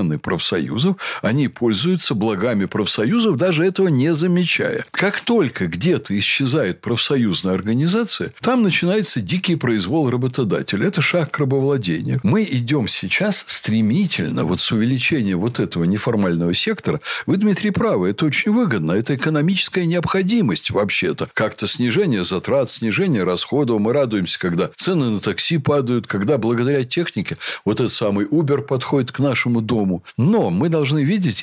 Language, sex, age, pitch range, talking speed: Russian, male, 60-79, 115-180 Hz, 135 wpm